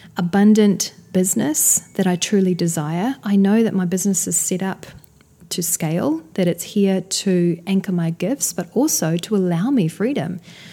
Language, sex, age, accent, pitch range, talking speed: English, female, 30-49, Australian, 180-225 Hz, 160 wpm